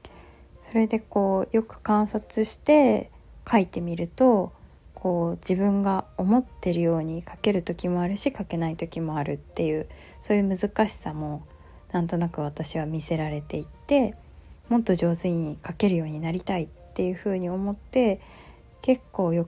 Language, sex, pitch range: Japanese, female, 160-215 Hz